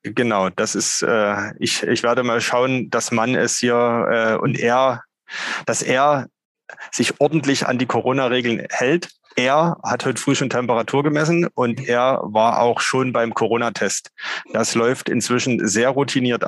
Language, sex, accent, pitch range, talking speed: German, male, German, 120-140 Hz, 155 wpm